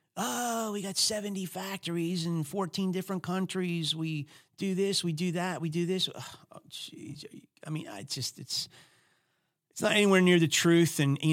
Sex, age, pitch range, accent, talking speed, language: male, 40-59, 105-155 Hz, American, 175 wpm, English